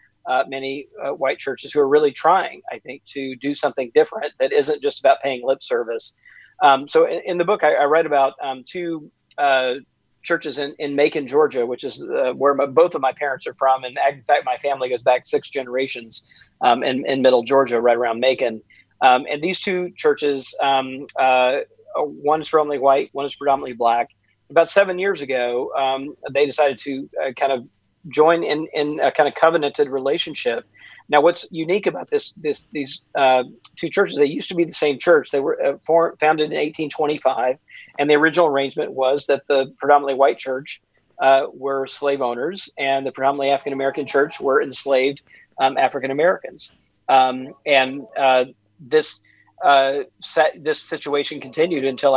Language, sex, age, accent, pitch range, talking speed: English, male, 40-59, American, 135-160 Hz, 180 wpm